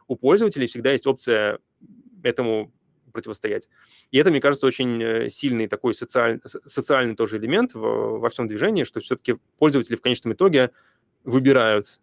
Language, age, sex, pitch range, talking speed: Russian, 20-39, male, 110-135 Hz, 145 wpm